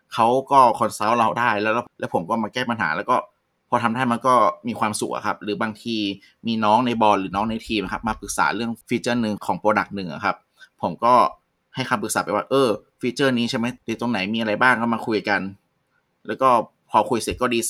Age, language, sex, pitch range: 20-39, Thai, male, 105-120 Hz